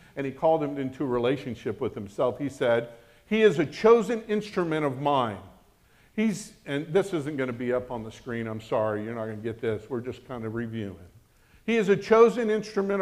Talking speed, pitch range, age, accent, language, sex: 215 wpm, 120-180 Hz, 50-69, American, English, male